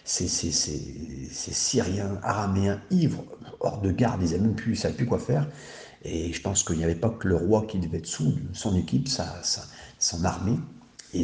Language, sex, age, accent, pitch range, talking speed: French, male, 50-69, French, 85-110 Hz, 175 wpm